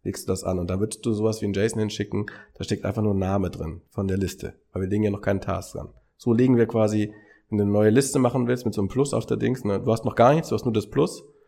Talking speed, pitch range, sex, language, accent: 315 wpm, 105-135 Hz, male, German, German